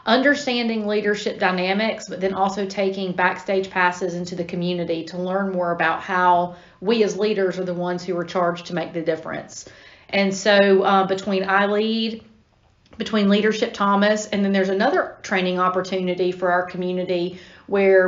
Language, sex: English, female